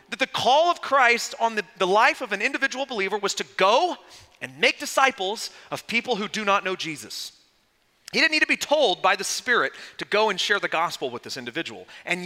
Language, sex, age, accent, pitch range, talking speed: English, male, 30-49, American, 145-220 Hz, 220 wpm